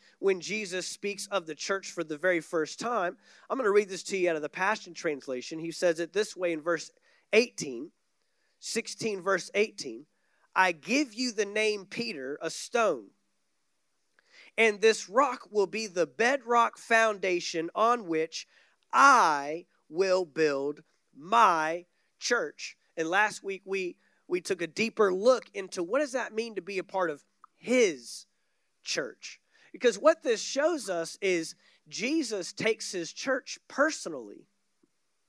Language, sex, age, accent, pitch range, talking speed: English, male, 30-49, American, 180-245 Hz, 150 wpm